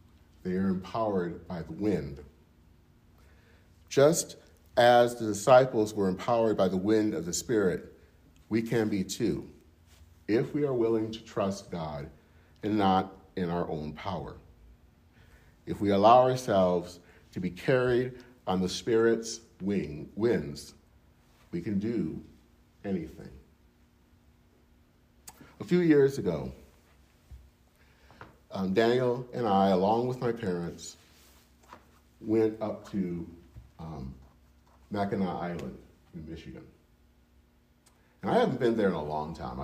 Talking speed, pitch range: 120 wpm, 75-105 Hz